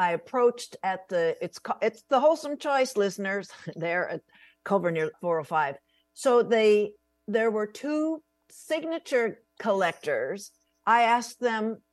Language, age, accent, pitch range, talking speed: English, 60-79, American, 180-245 Hz, 125 wpm